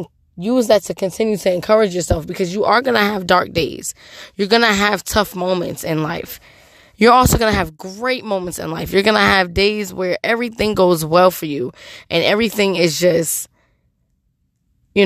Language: English